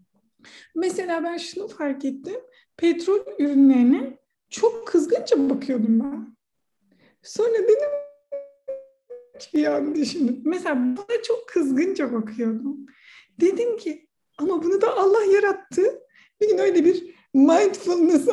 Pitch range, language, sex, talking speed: 280-395 Hz, Turkish, female, 100 wpm